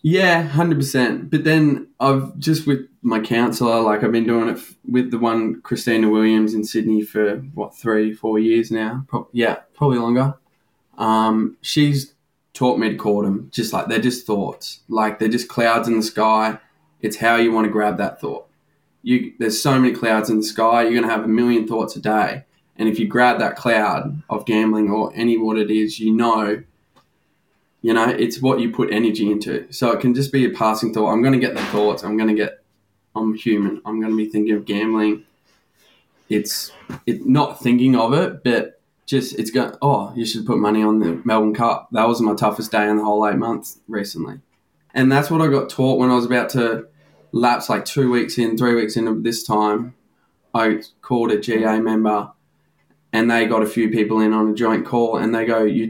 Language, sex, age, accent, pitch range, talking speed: English, male, 10-29, Australian, 110-125 Hz, 210 wpm